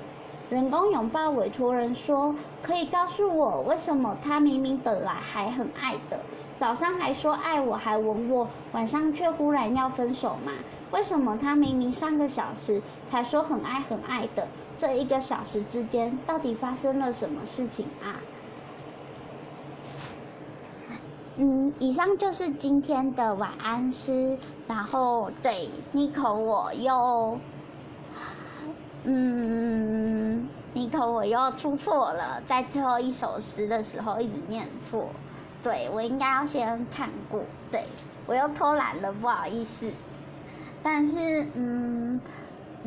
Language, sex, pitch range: Chinese, male, 235-295 Hz